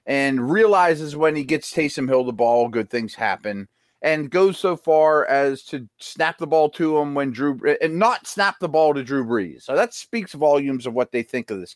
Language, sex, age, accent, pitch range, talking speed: English, male, 30-49, American, 125-175 Hz, 220 wpm